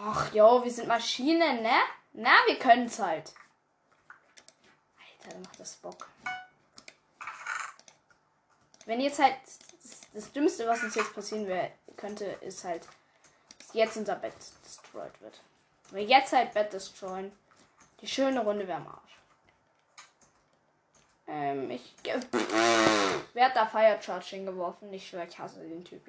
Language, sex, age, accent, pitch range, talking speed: German, female, 10-29, German, 200-265 Hz, 145 wpm